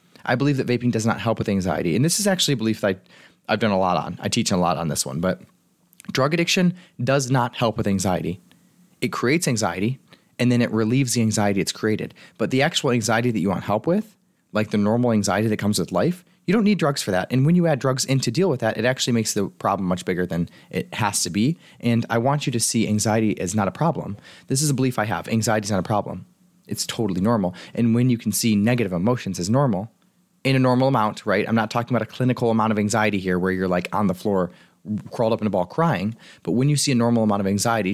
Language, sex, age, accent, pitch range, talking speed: English, male, 30-49, American, 105-140 Hz, 255 wpm